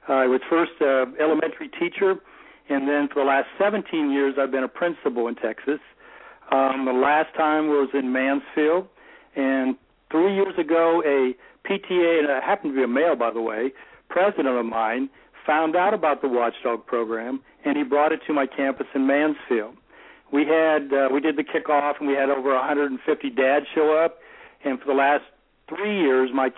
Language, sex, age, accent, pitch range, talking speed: English, male, 60-79, American, 130-160 Hz, 190 wpm